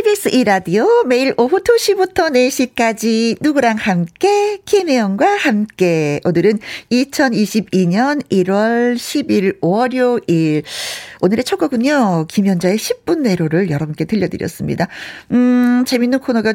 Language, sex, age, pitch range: Korean, female, 50-69, 185-270 Hz